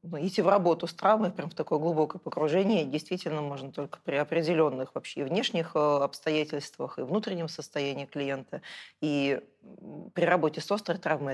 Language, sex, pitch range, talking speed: Russian, female, 145-180 Hz, 150 wpm